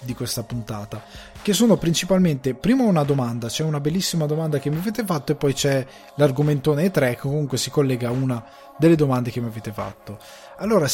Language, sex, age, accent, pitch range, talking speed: Italian, male, 20-39, native, 130-180 Hz, 195 wpm